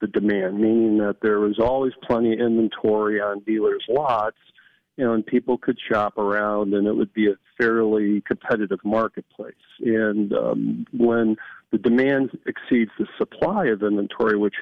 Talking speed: 150 wpm